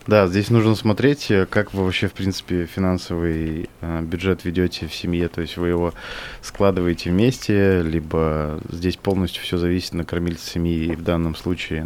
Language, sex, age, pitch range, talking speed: Russian, male, 20-39, 85-105 Hz, 160 wpm